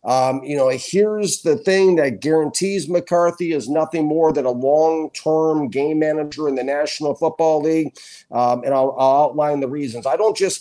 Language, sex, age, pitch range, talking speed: English, male, 50-69, 135-160 Hz, 180 wpm